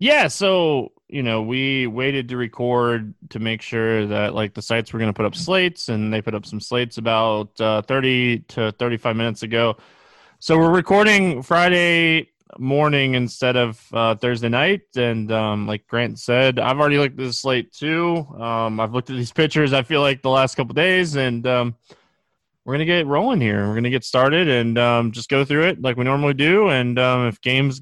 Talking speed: 205 wpm